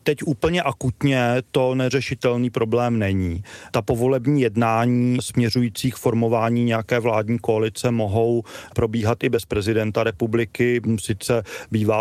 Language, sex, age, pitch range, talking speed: Czech, male, 30-49, 110-125 Hz, 115 wpm